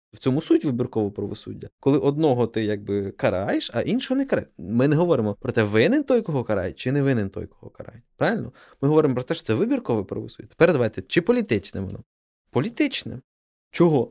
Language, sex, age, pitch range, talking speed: Ukrainian, male, 20-39, 115-165 Hz, 190 wpm